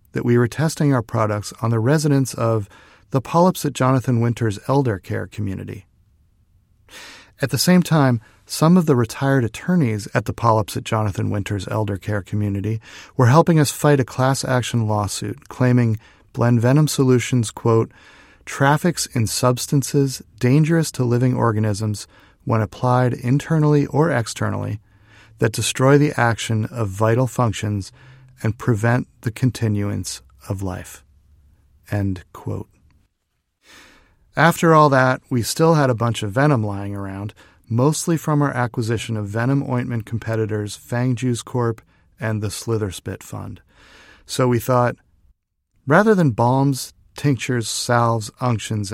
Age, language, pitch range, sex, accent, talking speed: 40-59, English, 105-135 Hz, male, American, 135 wpm